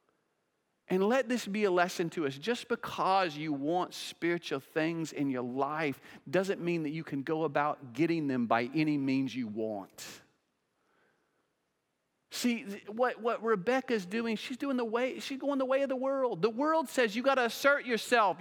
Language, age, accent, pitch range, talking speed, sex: English, 40-59, American, 215-285 Hz, 175 wpm, male